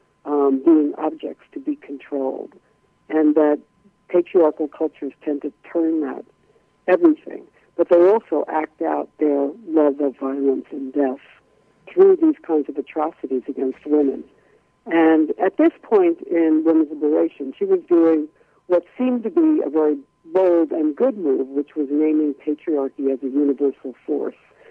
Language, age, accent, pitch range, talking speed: English, 60-79, American, 145-205 Hz, 150 wpm